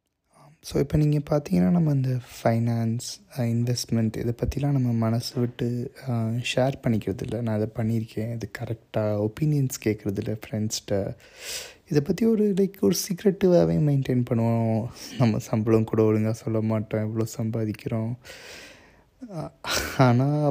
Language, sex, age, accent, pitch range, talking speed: Tamil, male, 20-39, native, 115-130 Hz, 120 wpm